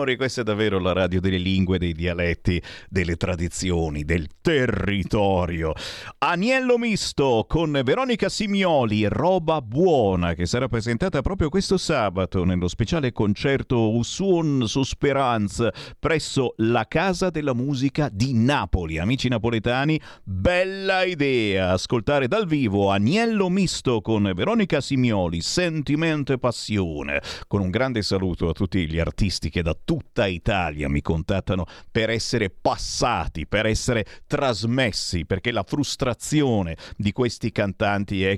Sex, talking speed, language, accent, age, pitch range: male, 125 wpm, Italian, native, 50-69, 95-135 Hz